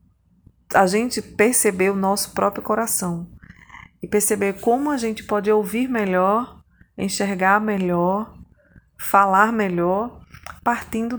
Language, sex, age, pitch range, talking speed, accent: Portuguese, female, 20-39, 180-215 Hz, 105 wpm, Brazilian